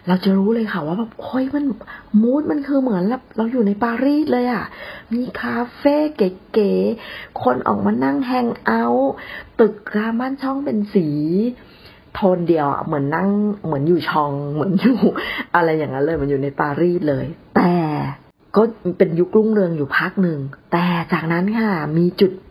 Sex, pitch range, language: female, 160-210 Hz, Thai